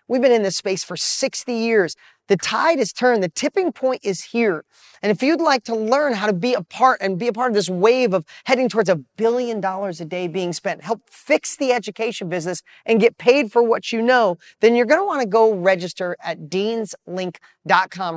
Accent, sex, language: American, male, English